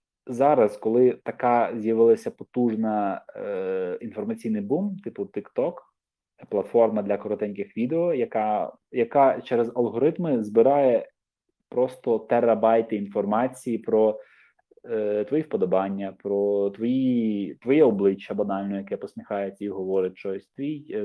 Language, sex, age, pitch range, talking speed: Ukrainian, male, 20-39, 105-145 Hz, 110 wpm